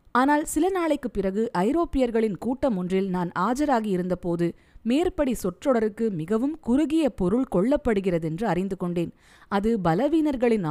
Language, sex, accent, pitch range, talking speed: Tamil, female, native, 185-265 Hz, 110 wpm